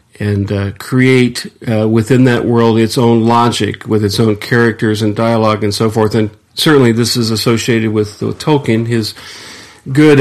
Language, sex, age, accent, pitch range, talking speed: English, male, 40-59, American, 110-130 Hz, 165 wpm